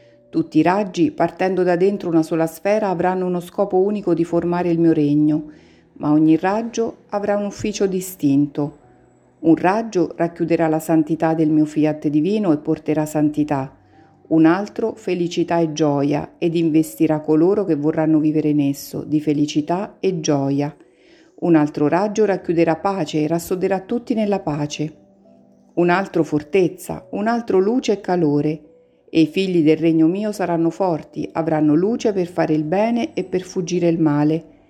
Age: 50-69